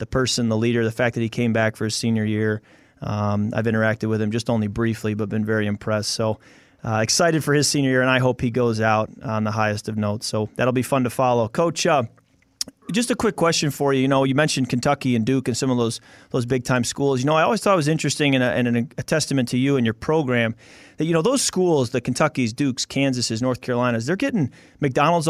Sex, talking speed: male, 250 wpm